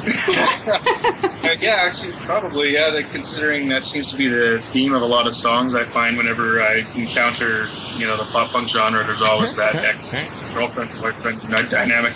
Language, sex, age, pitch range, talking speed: English, male, 20-39, 115-125 Hz, 160 wpm